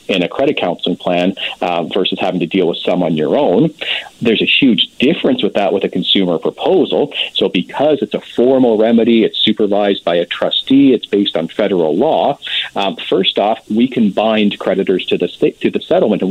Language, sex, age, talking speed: English, male, 40-59, 200 wpm